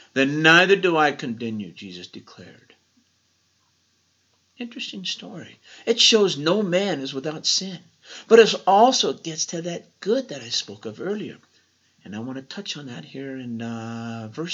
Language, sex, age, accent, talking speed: English, male, 60-79, American, 160 wpm